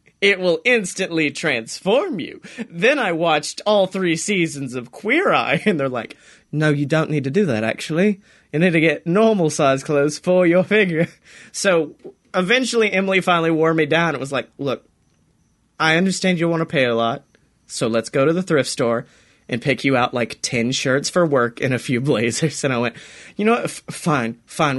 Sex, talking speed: male, 200 wpm